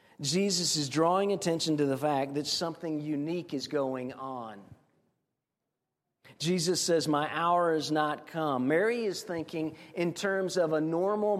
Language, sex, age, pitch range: English, male, 50-69, 150-180 Hz